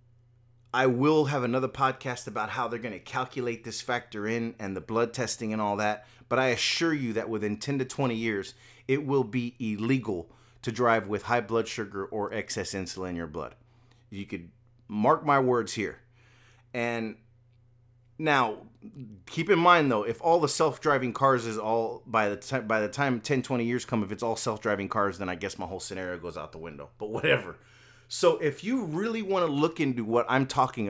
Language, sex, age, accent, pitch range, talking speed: English, male, 30-49, American, 110-135 Hz, 200 wpm